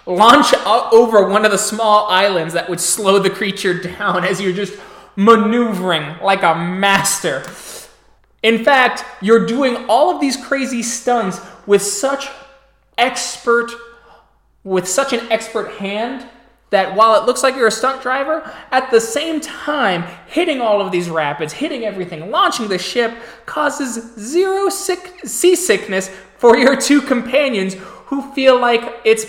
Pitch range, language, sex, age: 185-240 Hz, English, male, 20-39